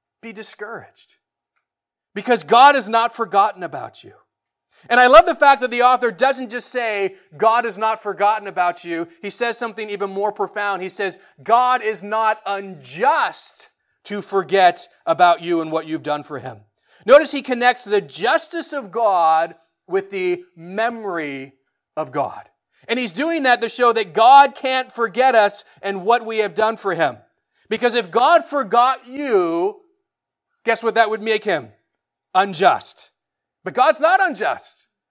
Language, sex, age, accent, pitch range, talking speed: English, male, 30-49, American, 195-270 Hz, 160 wpm